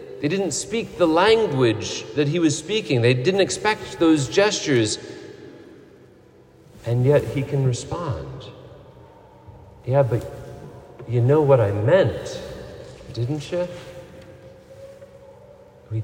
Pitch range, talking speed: 125-170 Hz, 110 wpm